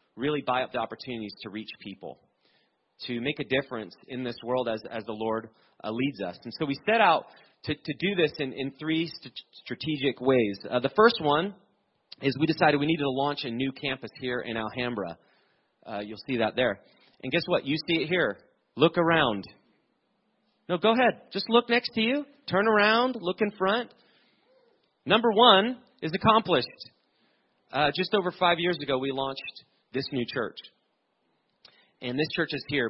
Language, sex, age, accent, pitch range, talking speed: English, male, 30-49, American, 110-150 Hz, 185 wpm